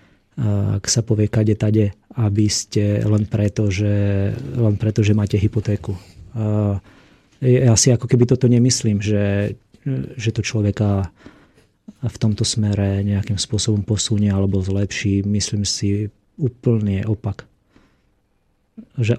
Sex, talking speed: male, 120 wpm